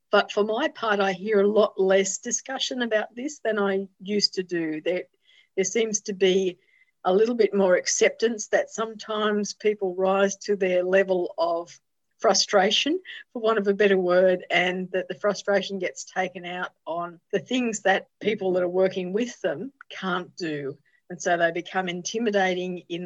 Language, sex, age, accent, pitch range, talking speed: English, female, 50-69, Australian, 180-210 Hz, 175 wpm